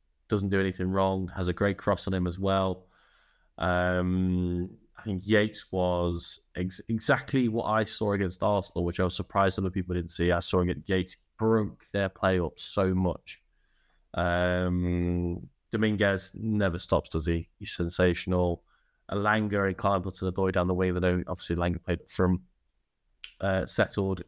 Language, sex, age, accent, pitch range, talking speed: English, male, 20-39, British, 90-105 Hz, 165 wpm